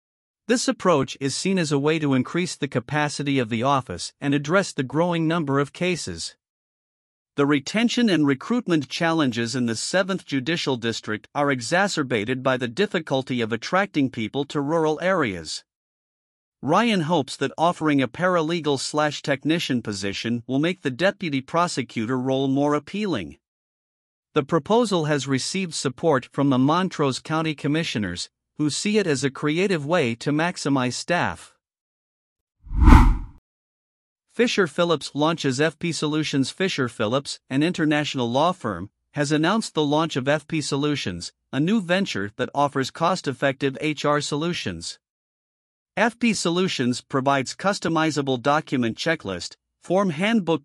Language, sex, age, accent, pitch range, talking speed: English, male, 50-69, American, 130-170 Hz, 130 wpm